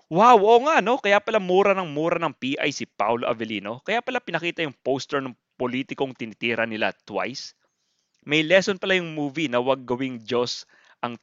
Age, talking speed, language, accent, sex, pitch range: 20-39, 180 wpm, English, Filipino, male, 115-150 Hz